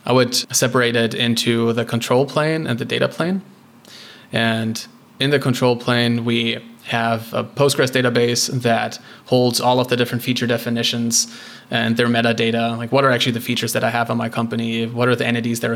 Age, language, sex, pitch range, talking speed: 20-39, English, male, 115-125 Hz, 190 wpm